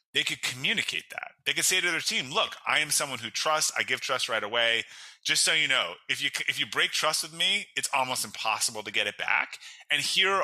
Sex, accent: male, American